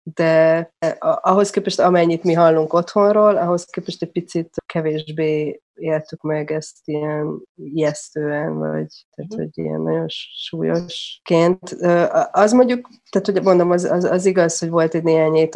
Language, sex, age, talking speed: Hungarian, female, 30-49, 140 wpm